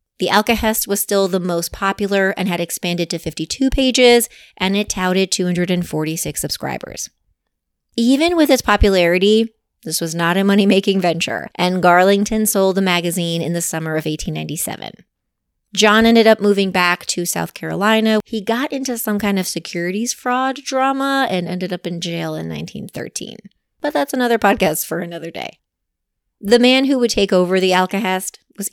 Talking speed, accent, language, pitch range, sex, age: 165 wpm, American, English, 170-215 Hz, female, 30-49